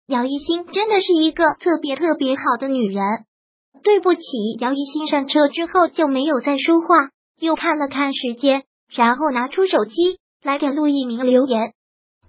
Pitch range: 265-330 Hz